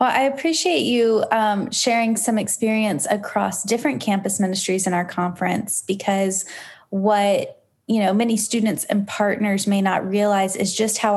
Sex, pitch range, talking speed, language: female, 180-205 Hz, 155 wpm, English